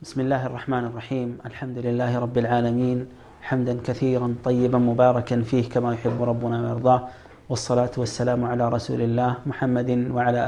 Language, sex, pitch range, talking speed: Amharic, male, 120-125 Hz, 135 wpm